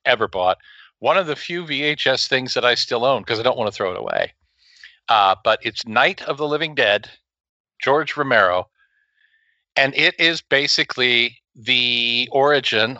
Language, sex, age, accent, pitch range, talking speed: English, male, 50-69, American, 105-135 Hz, 165 wpm